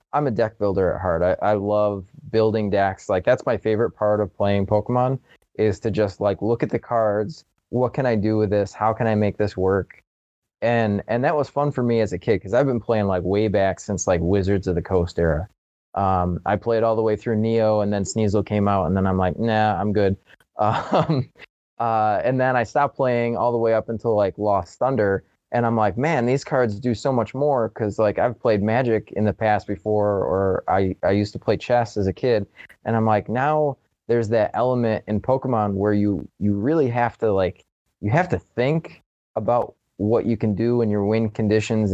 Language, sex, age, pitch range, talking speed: English, male, 20-39, 100-120 Hz, 225 wpm